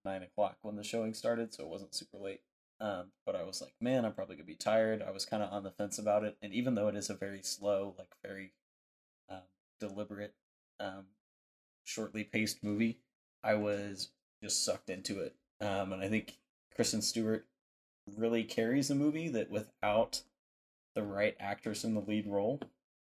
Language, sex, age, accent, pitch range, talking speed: English, male, 20-39, American, 95-110 Hz, 185 wpm